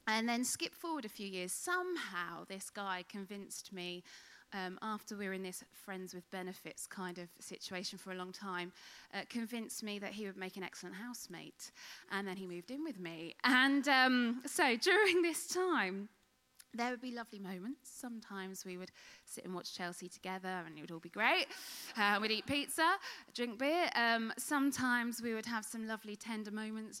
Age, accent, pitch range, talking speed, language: 20-39, British, 180-240 Hz, 190 wpm, English